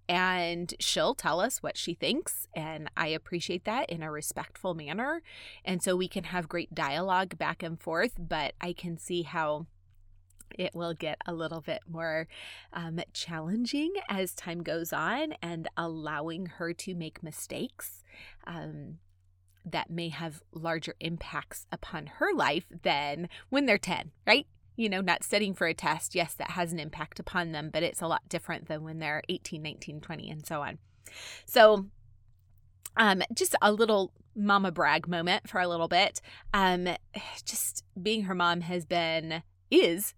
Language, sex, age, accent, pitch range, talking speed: English, female, 30-49, American, 150-190 Hz, 165 wpm